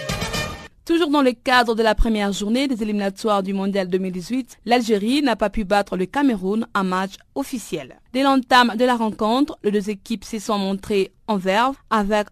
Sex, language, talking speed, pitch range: female, French, 180 wpm, 200-250 Hz